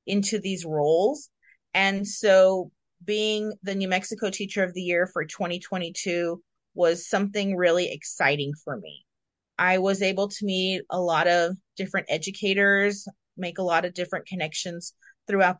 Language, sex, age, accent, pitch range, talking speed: English, female, 30-49, American, 175-205 Hz, 145 wpm